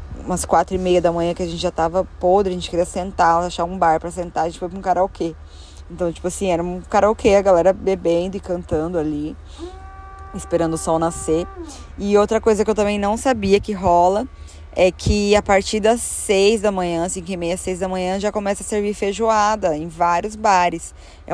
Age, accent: 20-39, Brazilian